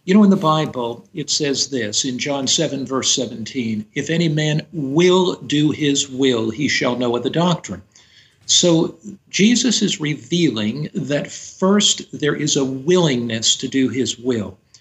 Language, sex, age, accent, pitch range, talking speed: English, male, 60-79, American, 125-160 Hz, 160 wpm